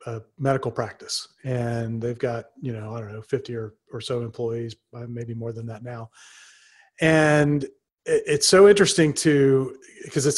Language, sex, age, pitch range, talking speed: English, male, 40-59, 125-150 Hz, 185 wpm